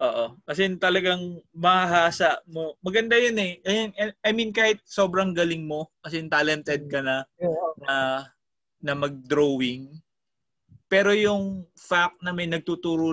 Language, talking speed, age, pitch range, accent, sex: Filipino, 130 wpm, 20-39, 135-175 Hz, native, male